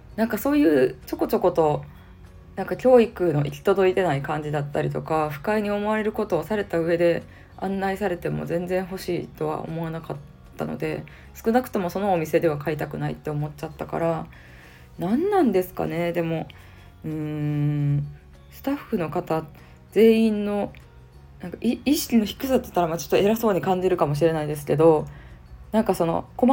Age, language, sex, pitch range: 20-39, Japanese, female, 145-195 Hz